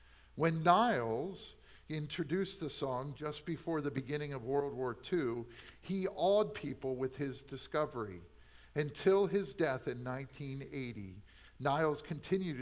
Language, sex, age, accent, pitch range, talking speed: English, male, 50-69, American, 95-155 Hz, 125 wpm